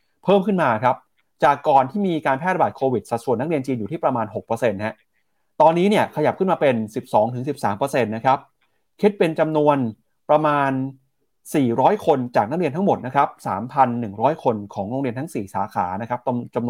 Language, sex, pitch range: Thai, male, 120-155 Hz